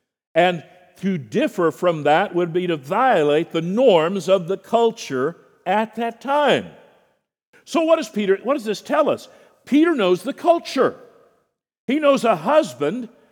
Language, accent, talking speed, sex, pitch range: English, American, 155 wpm, male, 180-255 Hz